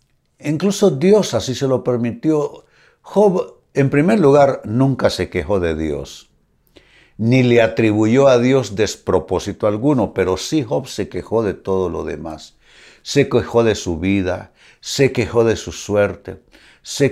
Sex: male